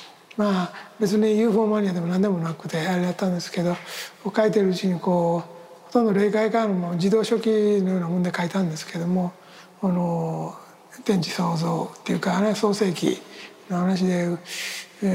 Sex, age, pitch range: male, 60-79, 175-210 Hz